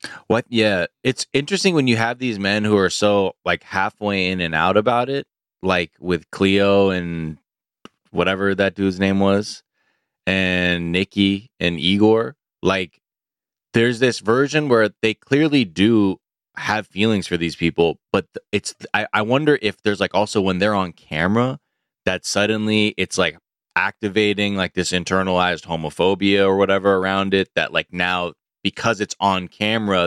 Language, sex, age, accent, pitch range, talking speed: English, male, 20-39, American, 90-105 Hz, 155 wpm